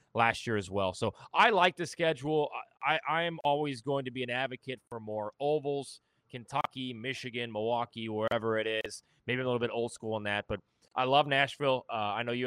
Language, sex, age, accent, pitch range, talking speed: English, male, 20-39, American, 115-135 Hz, 205 wpm